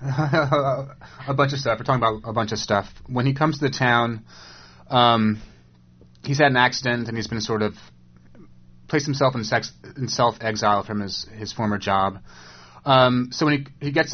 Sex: male